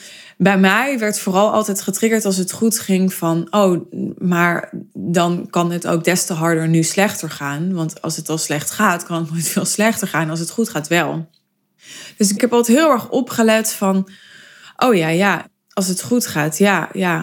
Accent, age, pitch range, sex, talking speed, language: Dutch, 20-39, 165-210 Hz, female, 200 wpm, Dutch